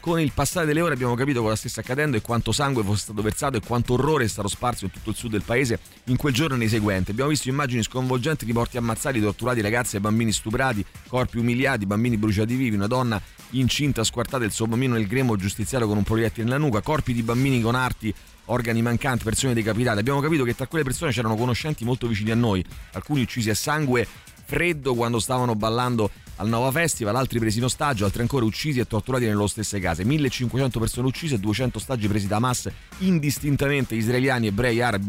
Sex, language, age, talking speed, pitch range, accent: male, Italian, 30-49, 210 wpm, 105-130 Hz, native